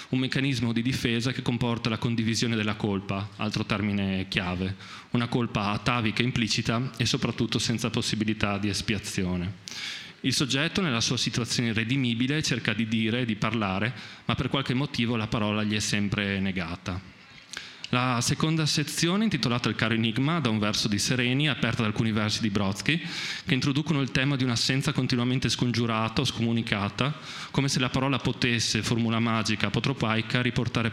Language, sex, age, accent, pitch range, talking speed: Italian, male, 30-49, native, 105-130 Hz, 160 wpm